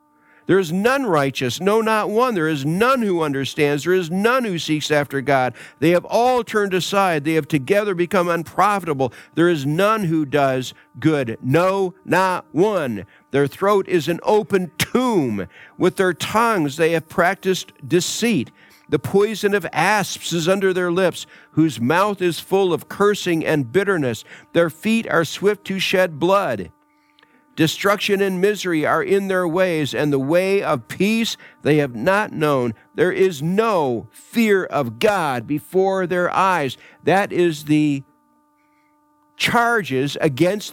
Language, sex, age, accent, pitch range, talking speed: English, male, 50-69, American, 160-210 Hz, 155 wpm